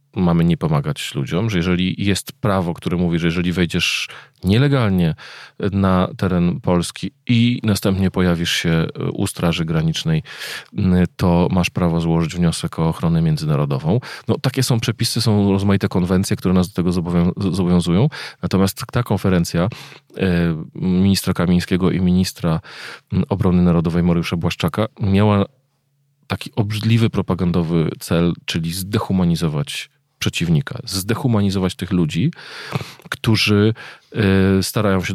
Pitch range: 90-125 Hz